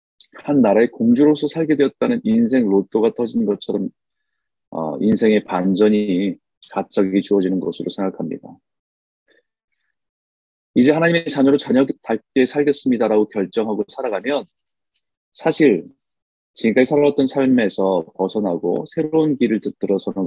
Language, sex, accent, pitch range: Korean, male, native, 95-145 Hz